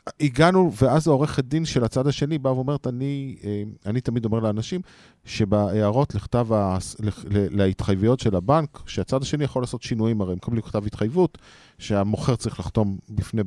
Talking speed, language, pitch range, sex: 145 wpm, Hebrew, 105-140 Hz, male